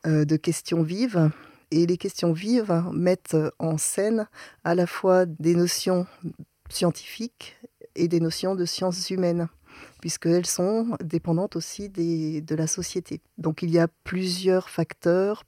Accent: French